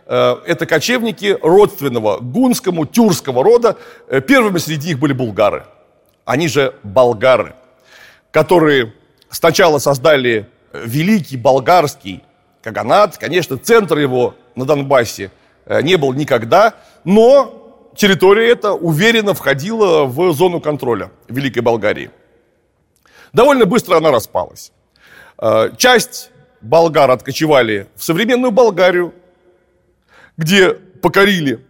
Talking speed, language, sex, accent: 95 wpm, Russian, male, native